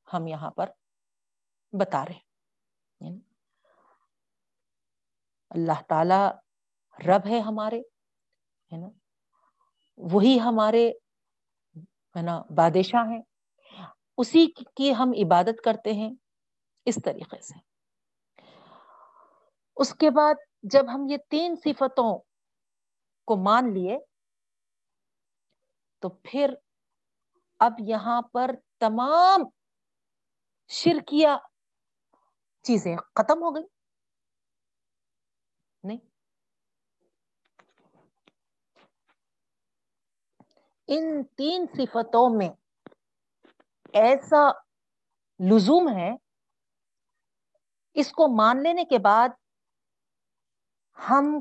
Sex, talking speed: female, 70 wpm